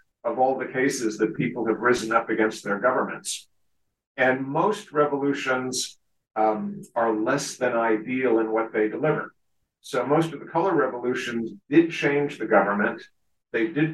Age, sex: 50-69, male